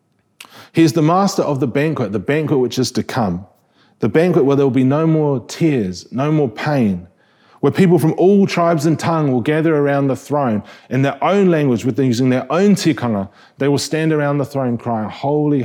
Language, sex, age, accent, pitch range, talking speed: English, male, 30-49, Australian, 120-155 Hz, 205 wpm